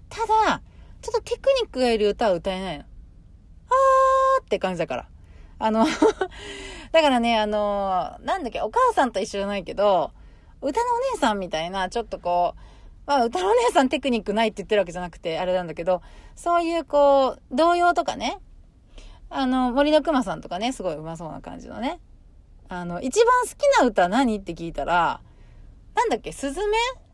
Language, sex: Japanese, female